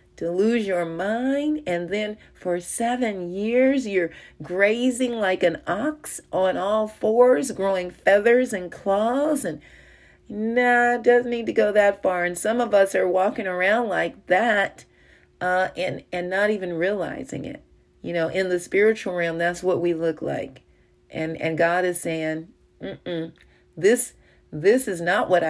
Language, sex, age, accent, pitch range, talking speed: English, female, 40-59, American, 165-215 Hz, 160 wpm